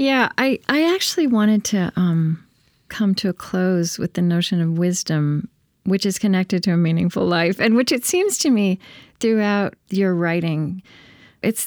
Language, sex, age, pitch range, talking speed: English, female, 40-59, 155-190 Hz, 170 wpm